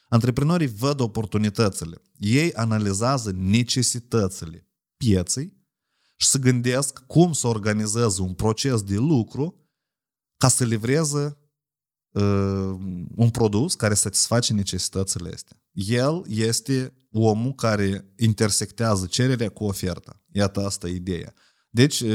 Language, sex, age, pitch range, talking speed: Romanian, male, 30-49, 100-130 Hz, 110 wpm